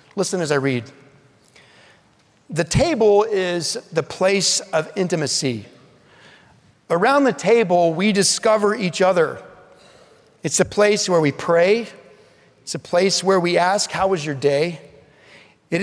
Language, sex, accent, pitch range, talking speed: English, male, American, 145-200 Hz, 135 wpm